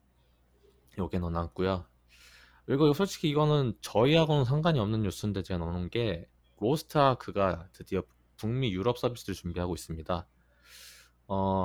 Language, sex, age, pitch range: Korean, male, 20-39, 85-115 Hz